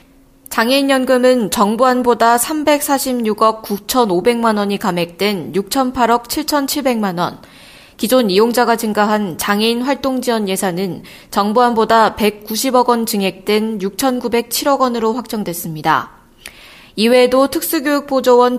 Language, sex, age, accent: Korean, female, 20-39, native